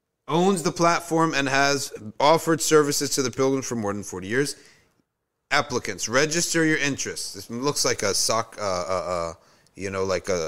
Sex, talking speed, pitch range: male, 170 wpm, 120-160 Hz